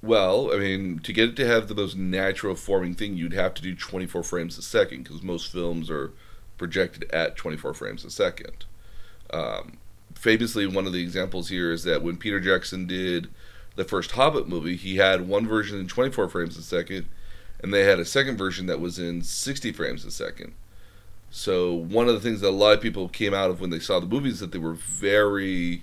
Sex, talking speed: male, 215 wpm